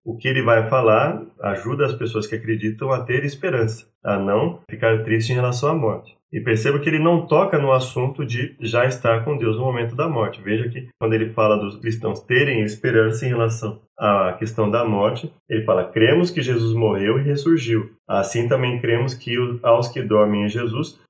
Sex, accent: male, Brazilian